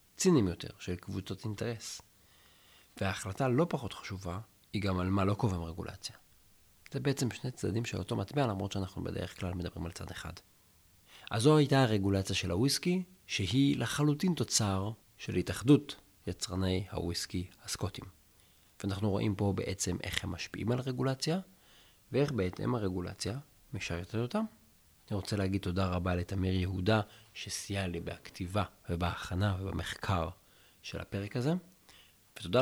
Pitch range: 90-115 Hz